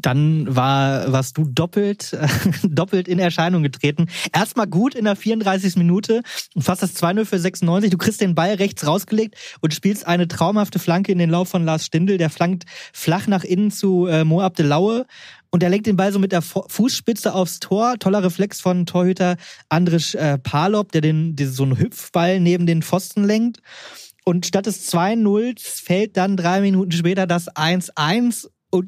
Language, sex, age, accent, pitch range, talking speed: German, male, 20-39, German, 165-195 Hz, 185 wpm